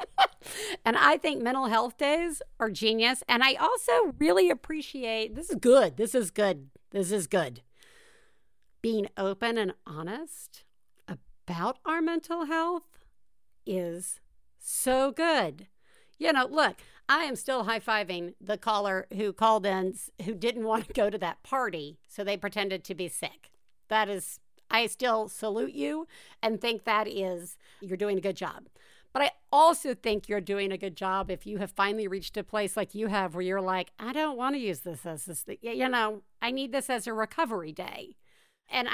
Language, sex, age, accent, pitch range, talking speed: English, female, 50-69, American, 195-270 Hz, 180 wpm